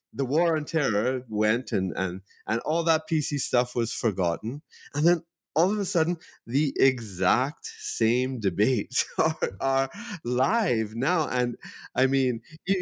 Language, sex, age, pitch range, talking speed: English, male, 30-49, 105-145 Hz, 150 wpm